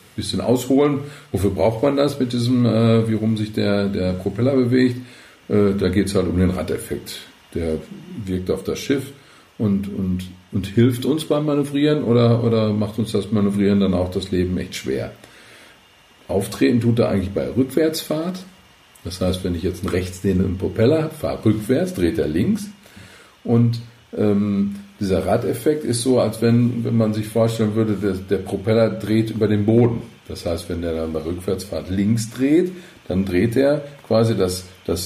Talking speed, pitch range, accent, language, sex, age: 175 wpm, 95-125 Hz, German, German, male, 50-69